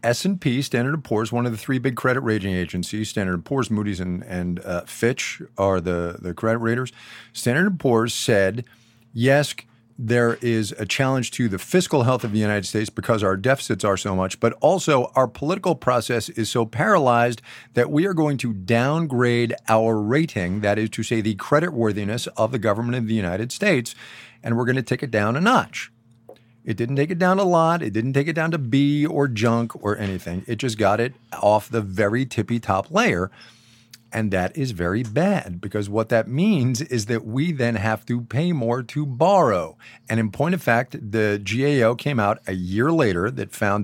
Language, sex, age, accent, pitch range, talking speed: English, male, 50-69, American, 110-130 Hz, 200 wpm